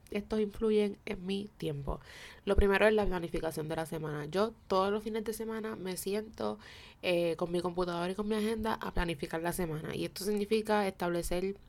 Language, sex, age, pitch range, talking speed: Spanish, female, 20-39, 165-200 Hz, 190 wpm